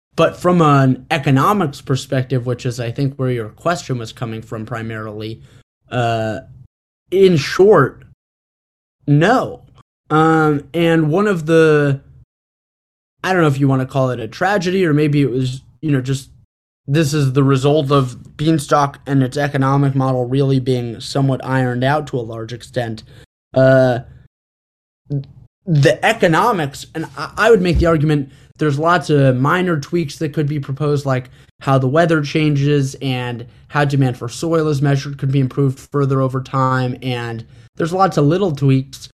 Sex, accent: male, American